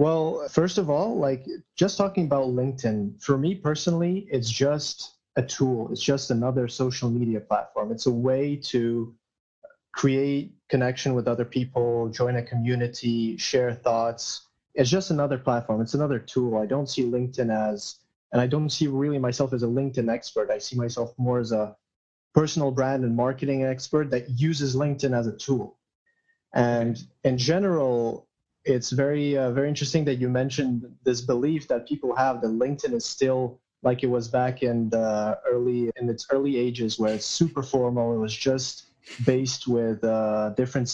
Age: 30-49